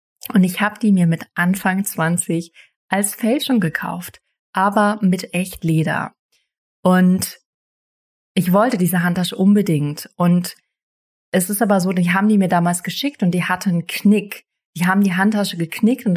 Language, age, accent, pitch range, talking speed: German, 30-49, German, 170-200 Hz, 160 wpm